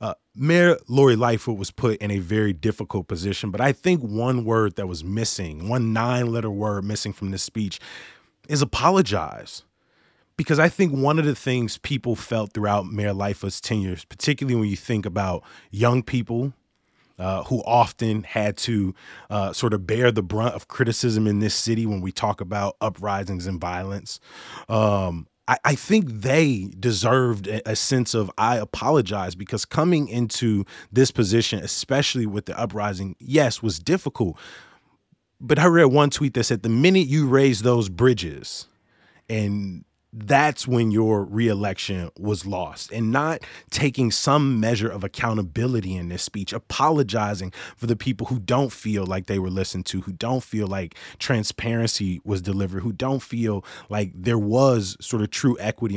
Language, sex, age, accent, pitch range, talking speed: English, male, 20-39, American, 100-125 Hz, 165 wpm